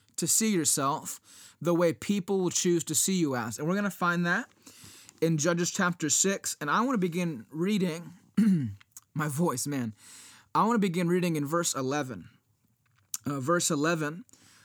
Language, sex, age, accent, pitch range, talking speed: English, male, 20-39, American, 145-190 Hz, 170 wpm